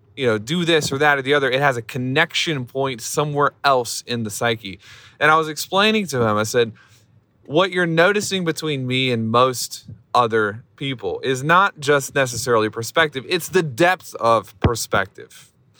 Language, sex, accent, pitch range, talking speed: English, male, American, 115-150 Hz, 175 wpm